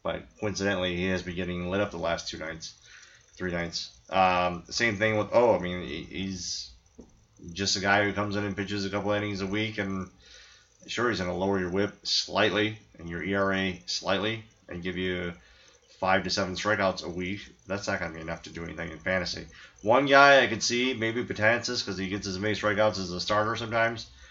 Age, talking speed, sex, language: 30-49, 215 wpm, male, English